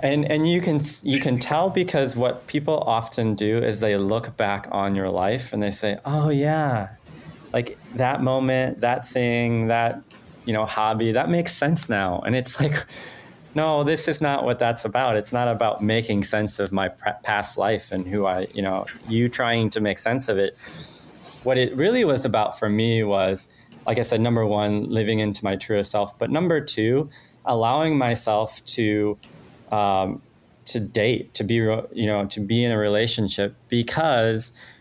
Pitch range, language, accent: 105-130 Hz, English, American